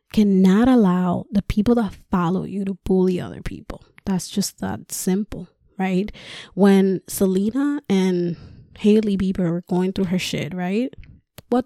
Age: 20-39